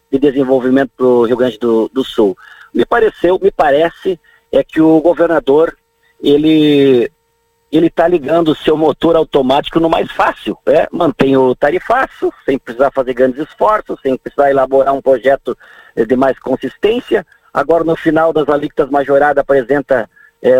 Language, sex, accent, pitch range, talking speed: Portuguese, male, Brazilian, 140-230 Hz, 155 wpm